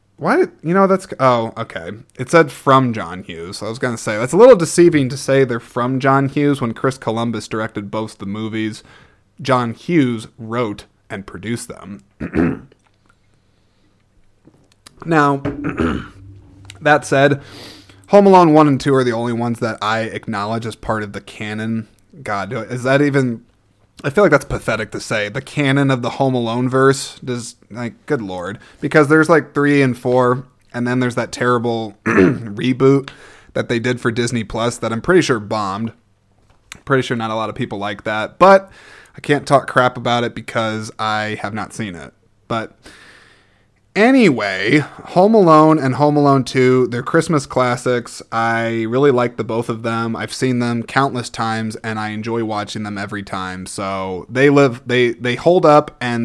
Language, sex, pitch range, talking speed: English, male, 110-140 Hz, 175 wpm